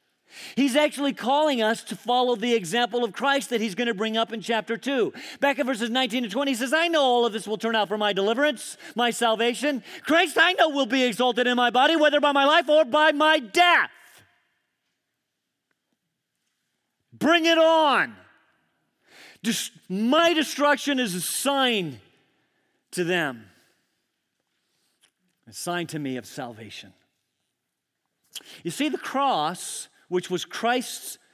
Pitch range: 175-265 Hz